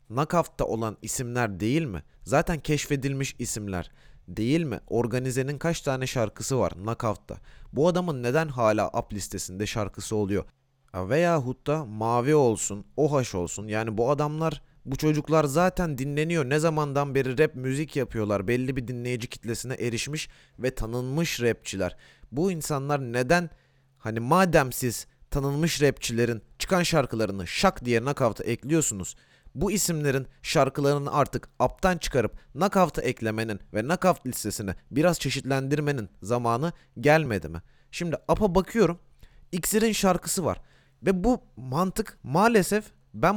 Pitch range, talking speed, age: 115-165 Hz, 125 wpm, 30-49